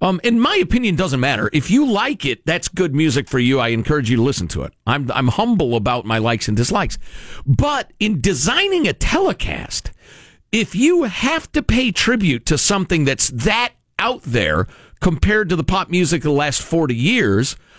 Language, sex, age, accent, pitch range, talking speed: English, male, 50-69, American, 120-200 Hz, 190 wpm